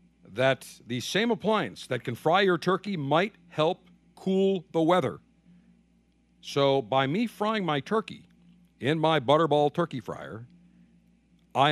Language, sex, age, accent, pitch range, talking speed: English, male, 50-69, American, 135-185 Hz, 135 wpm